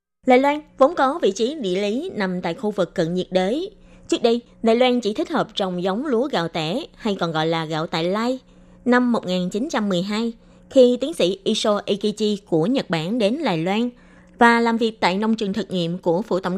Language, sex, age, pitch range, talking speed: Vietnamese, female, 20-39, 180-245 Hz, 210 wpm